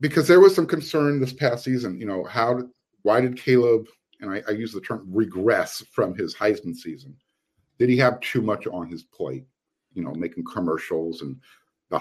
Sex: male